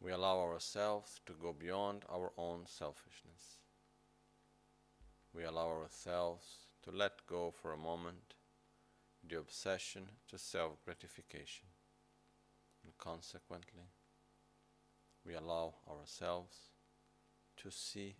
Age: 50-69